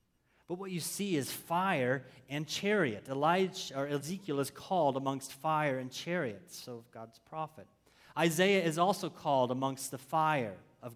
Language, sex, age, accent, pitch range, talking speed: English, male, 30-49, American, 115-150 Hz, 155 wpm